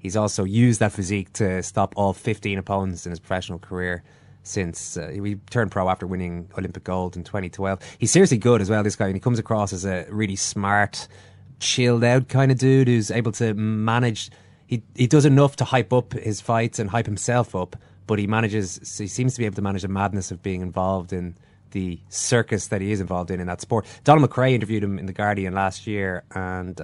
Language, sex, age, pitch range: English, male, 20-39, 95-120 Hz